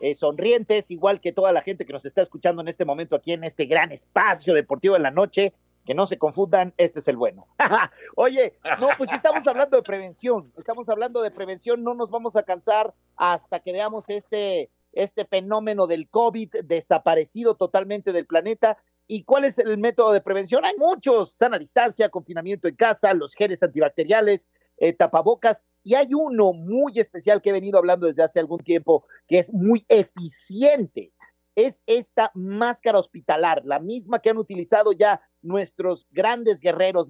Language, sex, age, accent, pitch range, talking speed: Spanish, male, 50-69, Mexican, 180-235 Hz, 175 wpm